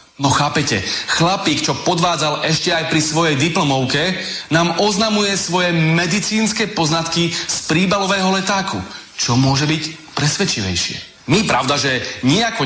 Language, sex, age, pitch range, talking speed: Slovak, male, 30-49, 135-180 Hz, 125 wpm